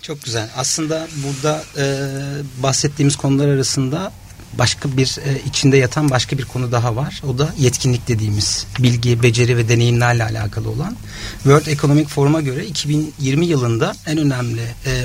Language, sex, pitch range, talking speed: Turkish, male, 115-145 Hz, 150 wpm